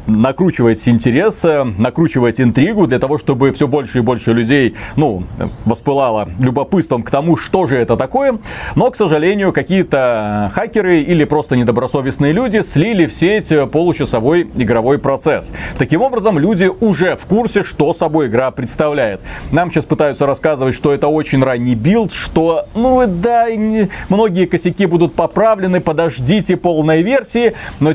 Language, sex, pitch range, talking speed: Russian, male, 130-185 Hz, 140 wpm